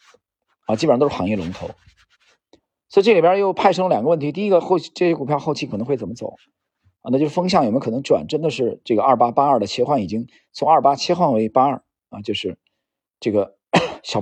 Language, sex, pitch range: Chinese, male, 120-170 Hz